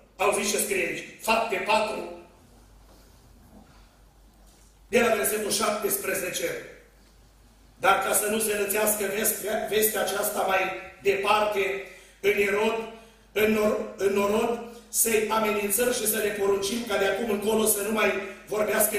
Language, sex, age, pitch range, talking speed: Romanian, male, 40-59, 200-230 Hz, 125 wpm